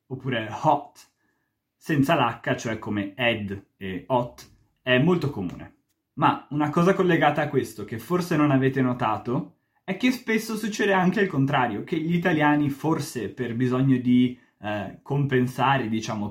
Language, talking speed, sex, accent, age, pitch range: Italian, 145 wpm, male, native, 20-39, 125-170 Hz